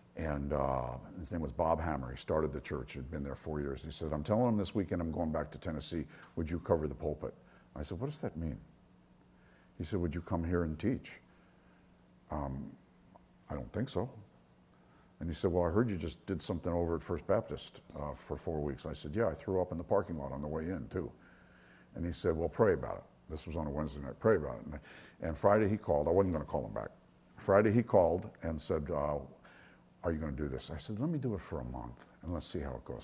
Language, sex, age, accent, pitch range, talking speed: English, male, 60-79, American, 70-90 Hz, 260 wpm